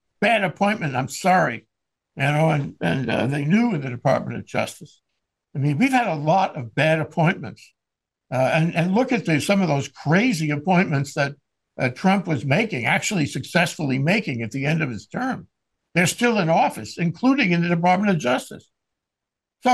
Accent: American